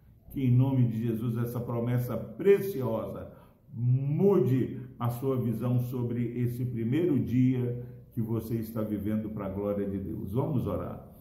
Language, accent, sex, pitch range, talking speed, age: Portuguese, Brazilian, male, 115-130 Hz, 145 wpm, 60-79